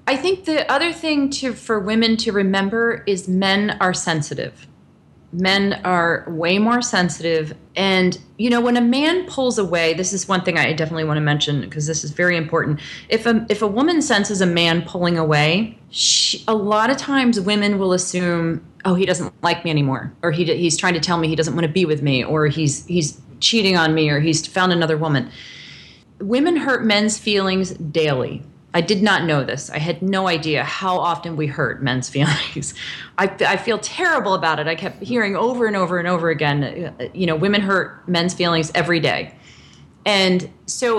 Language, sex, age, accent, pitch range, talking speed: English, female, 30-49, American, 165-220 Hz, 200 wpm